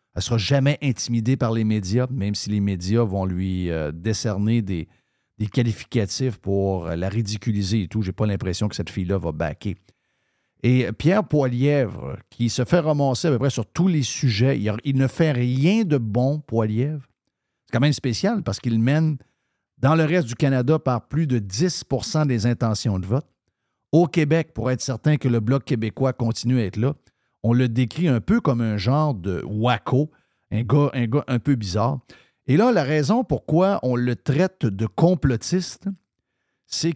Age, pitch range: 50-69, 110-140 Hz